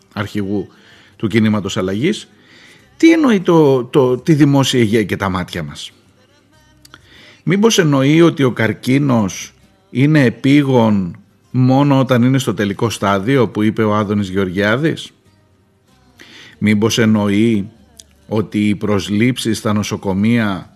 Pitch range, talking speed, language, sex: 105-145 Hz, 115 wpm, Greek, male